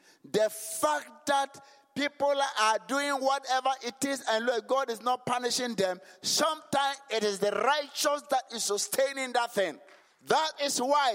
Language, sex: English, male